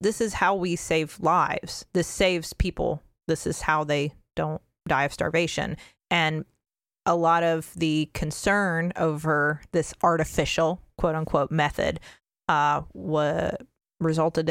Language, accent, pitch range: English, American, 160-190 Hz